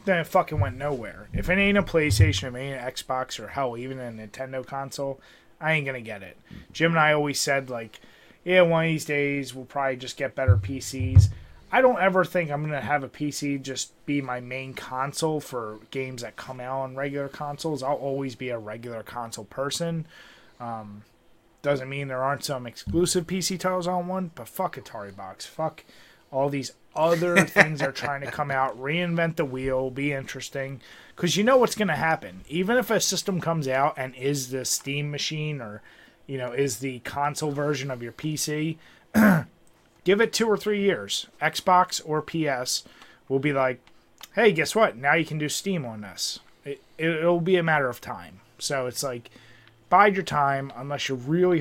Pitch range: 125-160 Hz